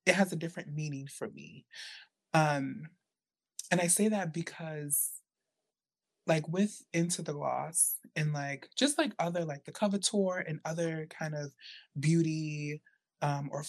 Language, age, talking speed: English, 20-39, 145 wpm